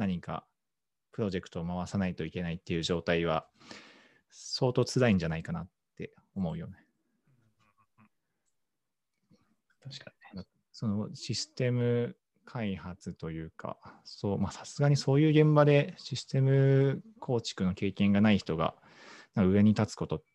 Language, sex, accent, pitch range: Japanese, male, native, 90-120 Hz